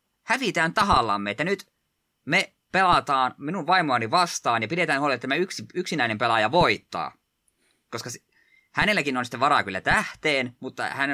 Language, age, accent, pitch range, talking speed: Finnish, 20-39, native, 105-145 Hz, 150 wpm